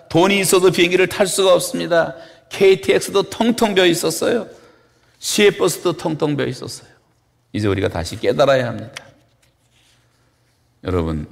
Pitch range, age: 100-130 Hz, 40-59